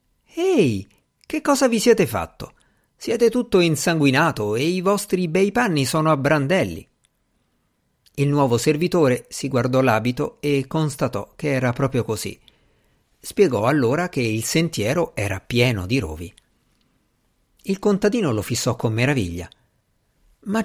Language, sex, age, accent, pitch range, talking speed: Italian, male, 50-69, native, 115-155 Hz, 130 wpm